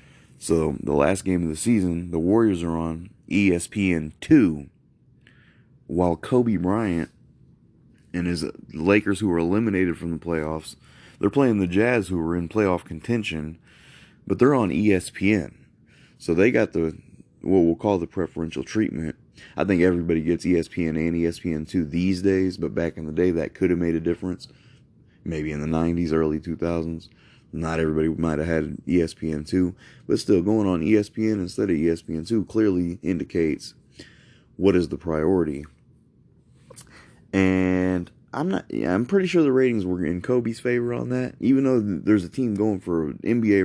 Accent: American